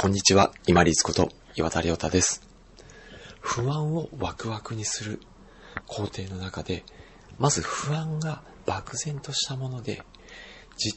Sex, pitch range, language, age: male, 90-115 Hz, Japanese, 40-59